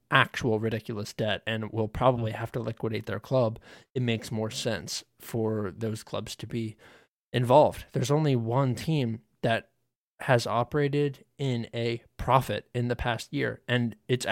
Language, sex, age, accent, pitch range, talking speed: English, male, 20-39, American, 110-125 Hz, 155 wpm